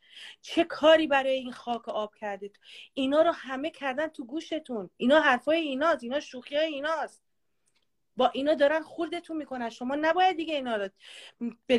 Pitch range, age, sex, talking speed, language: 245-320 Hz, 40-59, female, 170 wpm, Persian